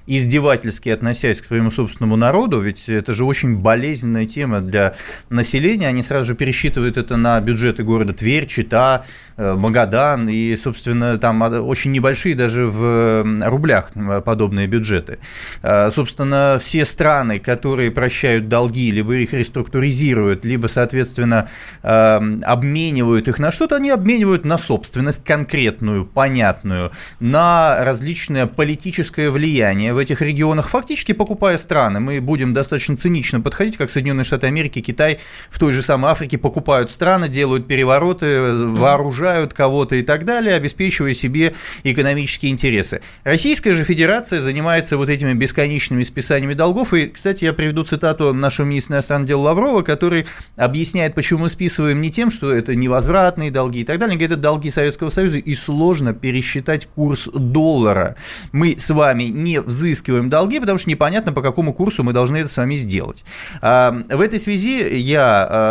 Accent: native